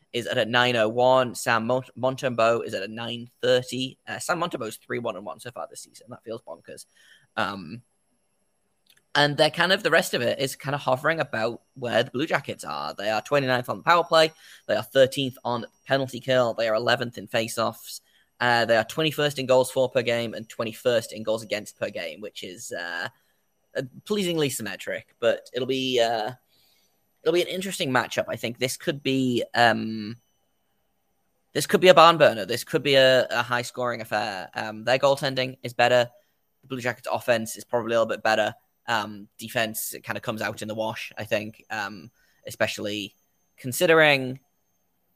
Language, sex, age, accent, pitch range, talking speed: English, male, 10-29, British, 115-140 Hz, 190 wpm